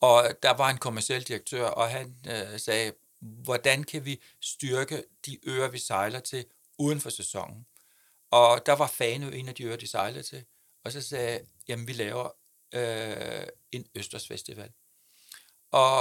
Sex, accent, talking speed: male, native, 165 wpm